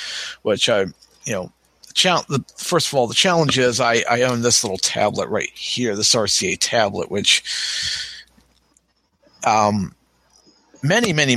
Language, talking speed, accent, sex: English, 130 wpm, American, male